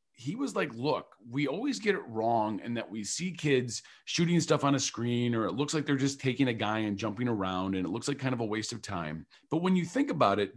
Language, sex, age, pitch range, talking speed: English, male, 40-59, 110-155 Hz, 265 wpm